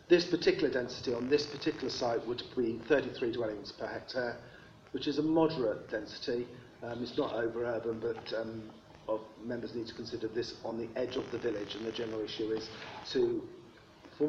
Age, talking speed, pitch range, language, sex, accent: 40-59, 180 wpm, 110-135 Hz, English, male, British